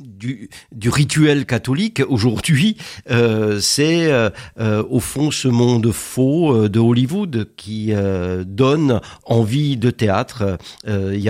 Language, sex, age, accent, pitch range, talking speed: French, male, 60-79, French, 105-140 Hz, 120 wpm